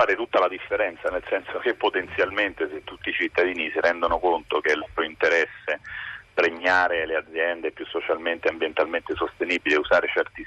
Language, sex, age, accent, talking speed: Italian, male, 40-59, native, 180 wpm